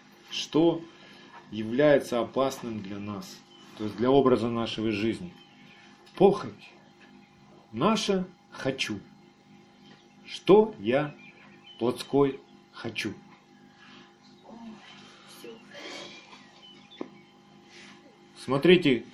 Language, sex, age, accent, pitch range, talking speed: Russian, male, 40-59, native, 125-180 Hz, 60 wpm